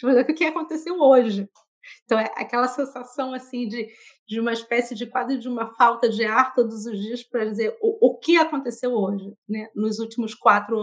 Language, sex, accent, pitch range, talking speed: Portuguese, female, Brazilian, 220-265 Hz, 195 wpm